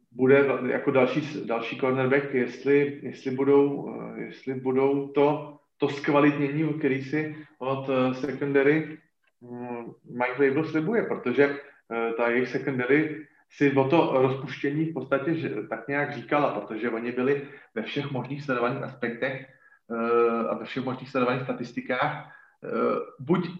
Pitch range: 130-150 Hz